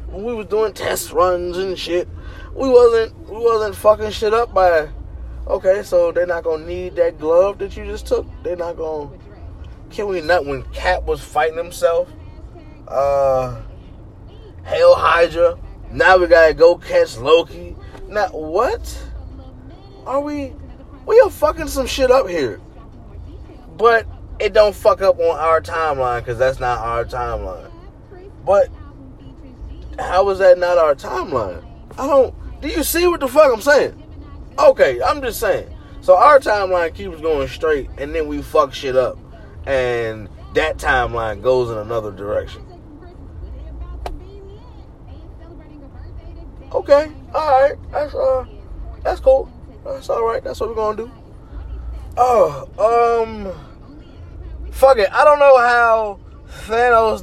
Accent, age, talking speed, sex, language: American, 20-39, 140 wpm, male, English